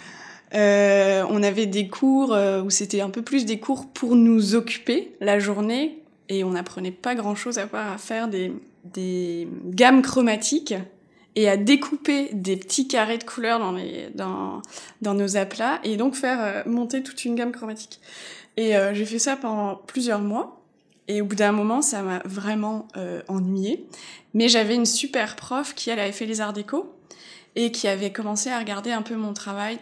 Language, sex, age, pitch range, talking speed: French, female, 20-39, 200-240 Hz, 185 wpm